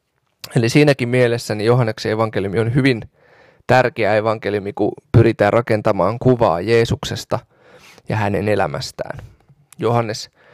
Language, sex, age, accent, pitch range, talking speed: Finnish, male, 20-39, native, 110-130 Hz, 110 wpm